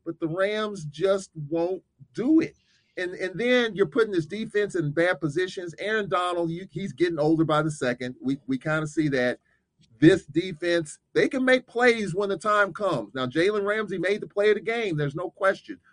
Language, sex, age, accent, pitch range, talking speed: English, male, 40-59, American, 160-210 Hz, 205 wpm